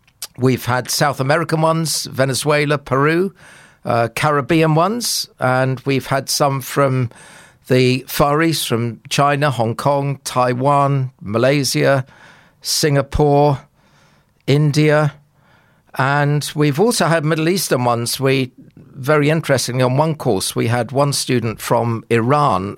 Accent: British